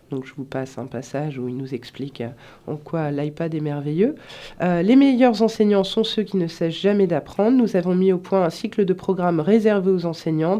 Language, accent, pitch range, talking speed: French, French, 165-210 Hz, 215 wpm